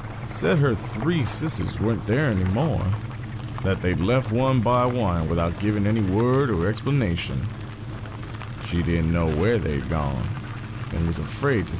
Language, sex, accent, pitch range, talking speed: English, male, American, 100-120 Hz, 145 wpm